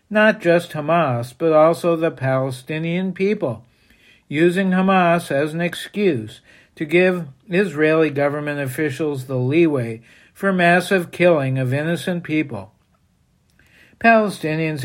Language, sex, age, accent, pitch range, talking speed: English, male, 60-79, American, 140-180 Hz, 110 wpm